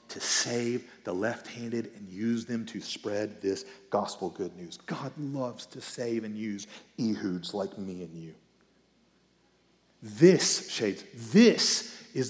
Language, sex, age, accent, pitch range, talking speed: English, male, 40-59, American, 105-150 Hz, 135 wpm